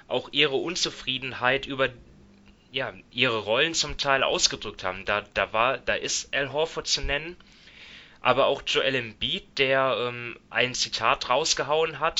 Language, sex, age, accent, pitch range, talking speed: German, male, 20-39, German, 115-145 Hz, 150 wpm